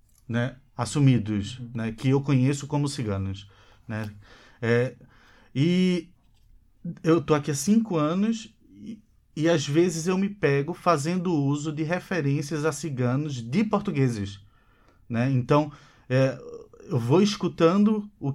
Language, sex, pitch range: Portuguese, male, 120-170 Hz